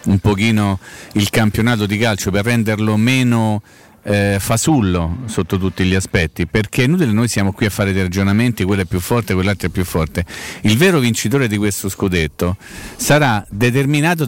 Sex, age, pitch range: male, 40-59, 95-125 Hz